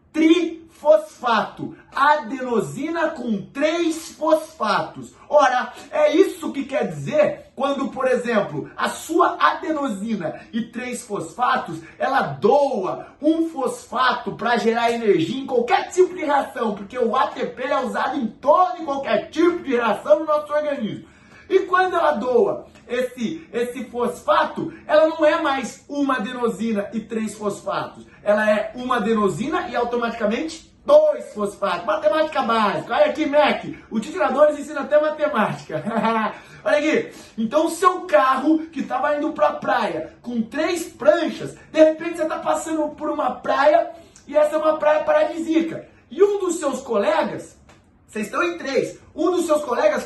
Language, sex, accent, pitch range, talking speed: Portuguese, male, Brazilian, 235-310 Hz, 145 wpm